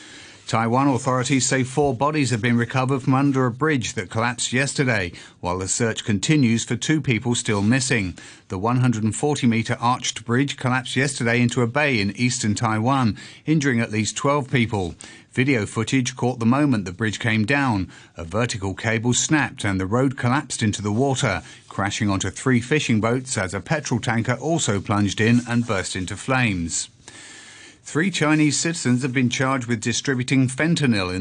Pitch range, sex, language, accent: 110-135 Hz, male, English, British